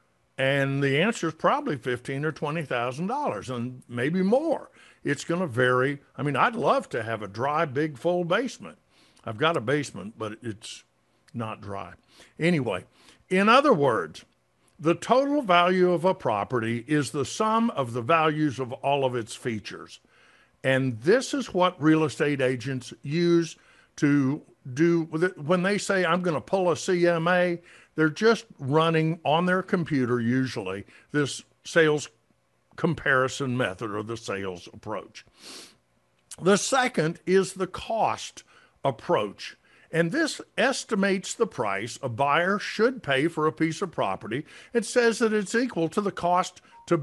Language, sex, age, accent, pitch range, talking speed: English, male, 60-79, American, 130-185 Hz, 155 wpm